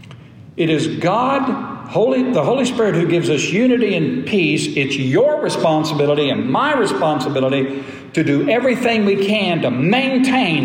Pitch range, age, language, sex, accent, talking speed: 130-185 Hz, 60-79, English, male, American, 145 wpm